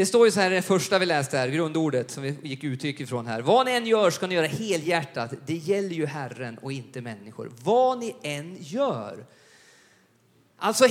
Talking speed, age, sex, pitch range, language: 205 wpm, 30-49, male, 140-200 Hz, Swedish